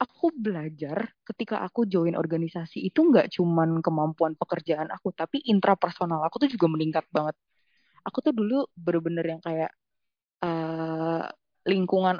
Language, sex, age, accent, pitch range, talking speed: Indonesian, female, 20-39, native, 165-215 Hz, 135 wpm